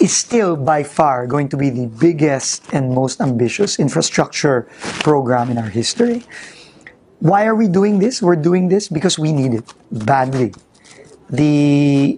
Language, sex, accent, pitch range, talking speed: English, male, Filipino, 125-165 Hz, 155 wpm